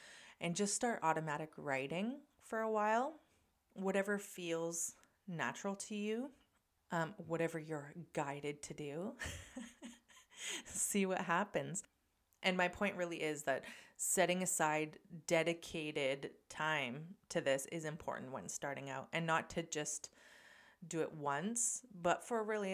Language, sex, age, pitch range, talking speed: English, female, 30-49, 150-190 Hz, 130 wpm